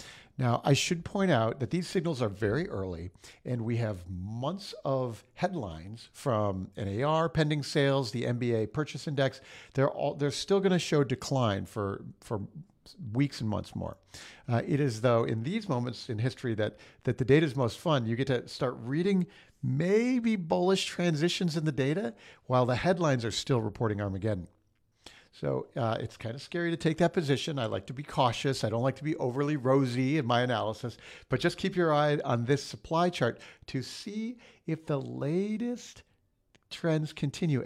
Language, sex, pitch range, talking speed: English, male, 110-150 Hz, 180 wpm